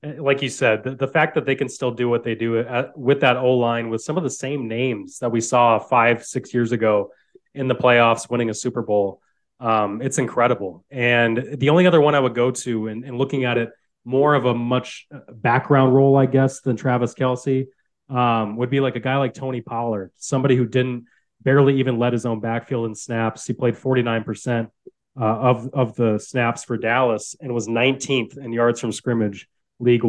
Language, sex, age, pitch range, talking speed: English, male, 20-39, 115-135 Hz, 205 wpm